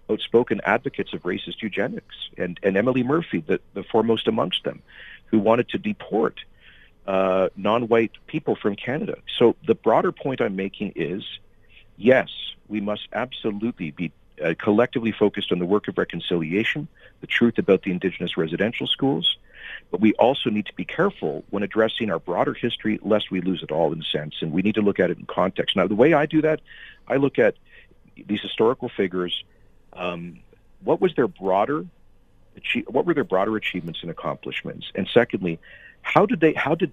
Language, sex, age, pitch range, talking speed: English, male, 50-69, 95-120 Hz, 180 wpm